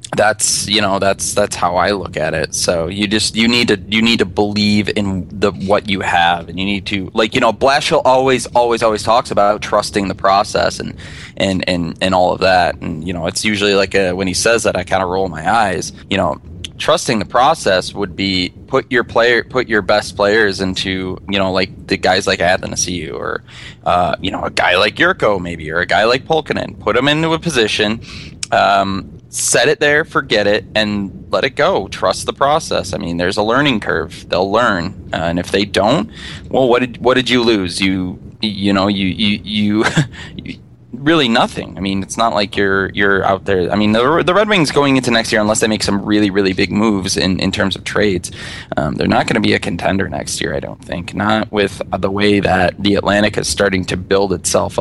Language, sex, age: English, male, 20-39